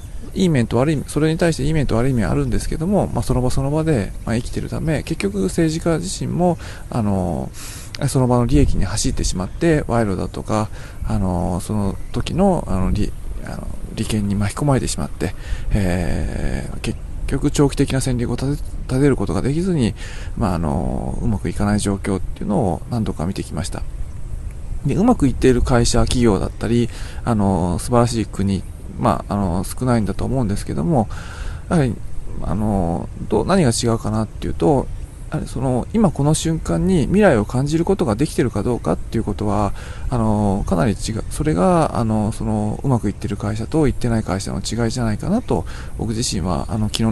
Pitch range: 95-130 Hz